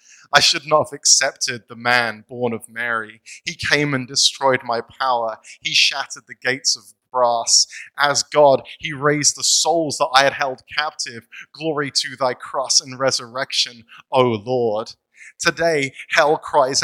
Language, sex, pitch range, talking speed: English, male, 130-155 Hz, 155 wpm